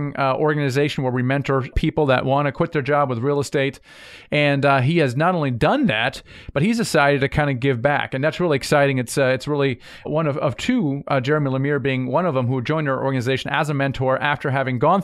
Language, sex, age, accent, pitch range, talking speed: English, male, 40-59, American, 130-155 Hz, 240 wpm